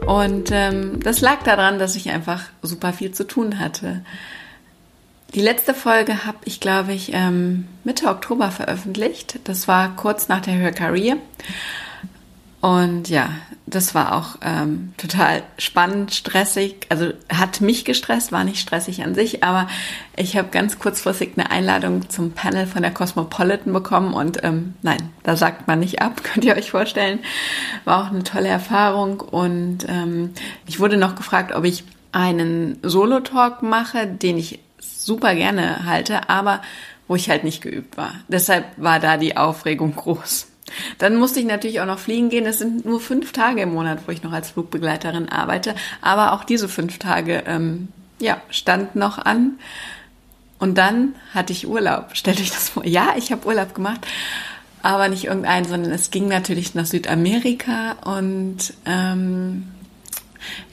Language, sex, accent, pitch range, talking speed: German, female, German, 175-210 Hz, 160 wpm